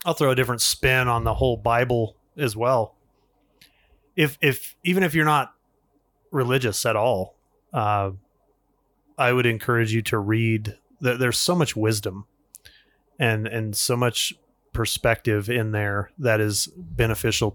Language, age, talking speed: English, 30-49, 140 wpm